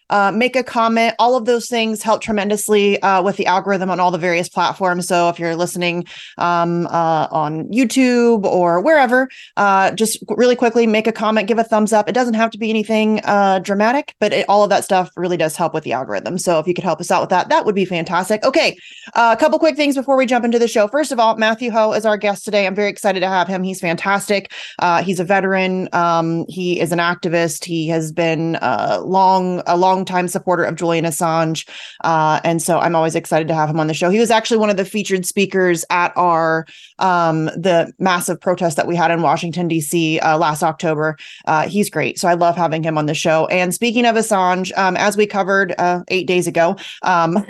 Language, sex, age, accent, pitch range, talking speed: English, female, 30-49, American, 170-215 Hz, 225 wpm